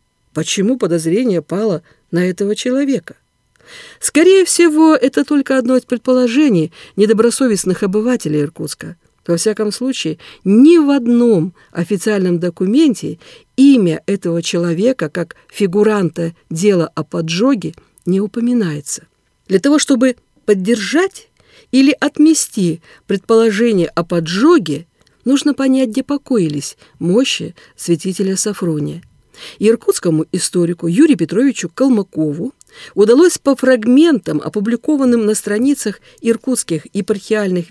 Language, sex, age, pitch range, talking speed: Russian, female, 50-69, 175-270 Hz, 100 wpm